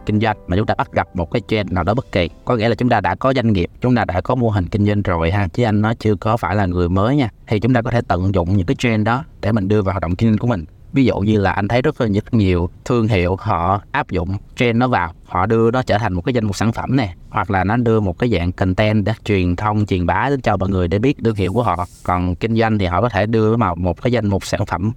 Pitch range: 90-120 Hz